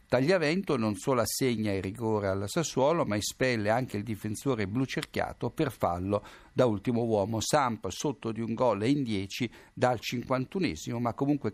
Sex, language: male, Italian